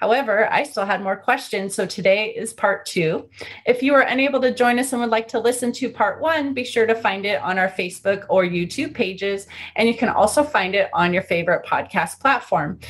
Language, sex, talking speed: English, female, 225 wpm